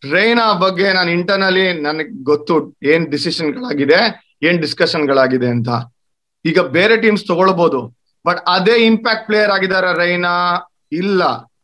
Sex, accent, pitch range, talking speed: male, native, 170-225 Hz, 120 wpm